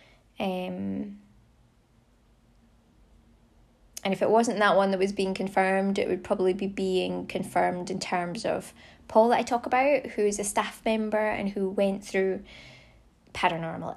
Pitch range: 180-215 Hz